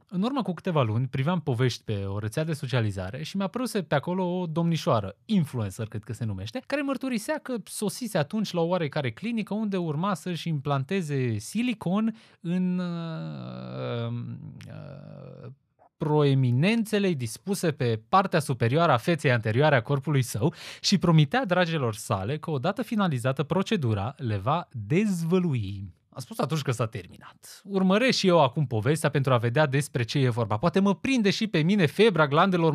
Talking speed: 165 wpm